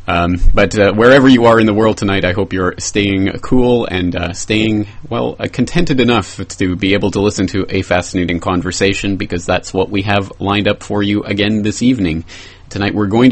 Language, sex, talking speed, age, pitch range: English, male, 205 wpm, 30-49, 90-110 Hz